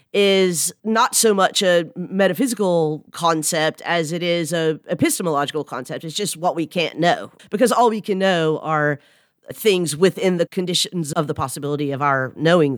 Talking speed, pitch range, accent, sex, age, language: 165 wpm, 155-205 Hz, American, female, 40-59, English